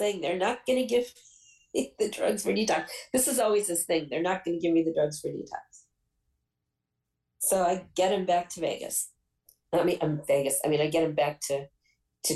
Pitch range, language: 155-205 Hz, English